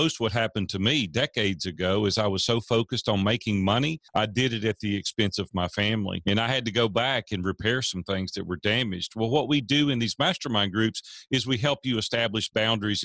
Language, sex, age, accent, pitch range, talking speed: English, male, 40-59, American, 100-125 Hz, 230 wpm